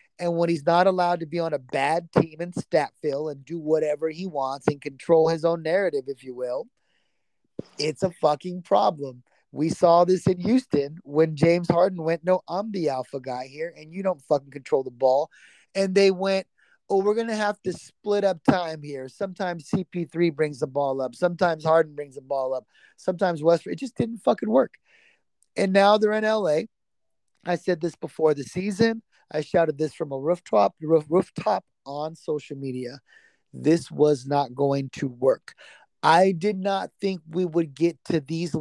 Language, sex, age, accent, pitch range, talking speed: English, male, 30-49, American, 145-185 Hz, 190 wpm